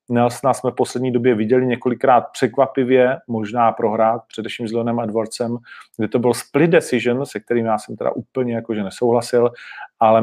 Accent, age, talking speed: native, 40-59, 165 wpm